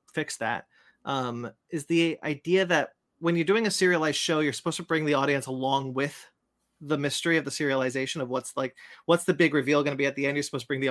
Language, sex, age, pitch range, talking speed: English, male, 30-49, 135-175 Hz, 240 wpm